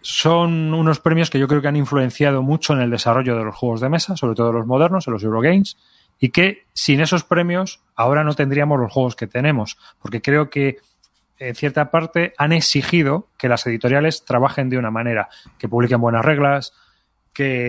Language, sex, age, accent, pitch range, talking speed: Spanish, male, 30-49, Spanish, 125-155 Hz, 195 wpm